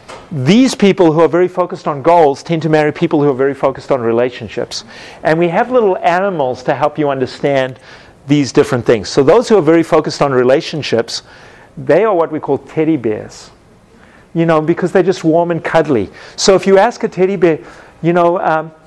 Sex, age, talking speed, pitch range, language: male, 40-59, 200 wpm, 140-180 Hz, English